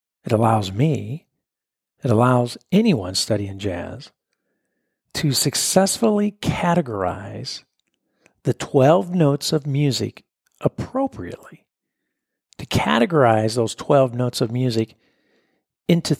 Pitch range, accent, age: 115-175 Hz, American, 50-69